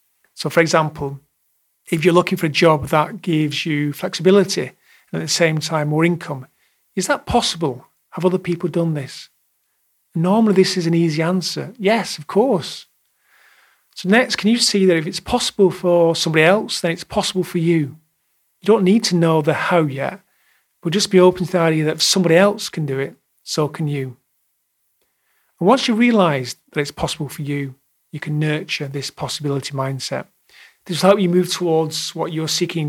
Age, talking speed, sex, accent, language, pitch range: 40-59, 190 wpm, male, British, English, 145-180 Hz